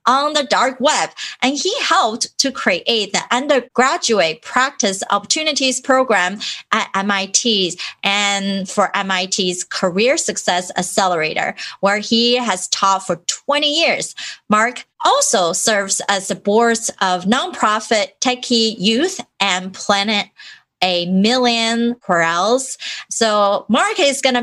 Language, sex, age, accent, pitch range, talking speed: English, female, 30-49, American, 190-255 Hz, 120 wpm